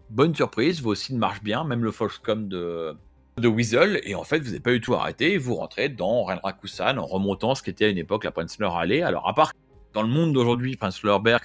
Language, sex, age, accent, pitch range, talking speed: French, male, 30-49, French, 95-115 Hz, 235 wpm